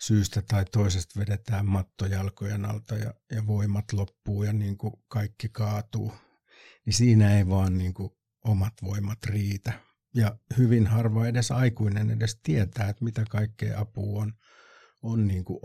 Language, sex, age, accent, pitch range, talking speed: Finnish, male, 60-79, native, 100-110 Hz, 150 wpm